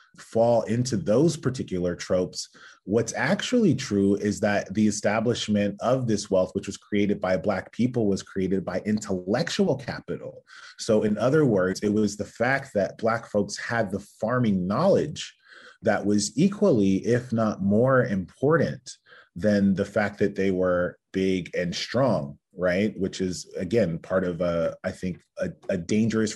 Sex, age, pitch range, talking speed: male, 30-49, 95-115 Hz, 155 wpm